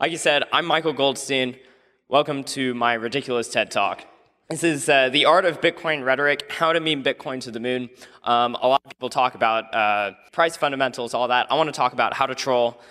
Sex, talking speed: male, 220 wpm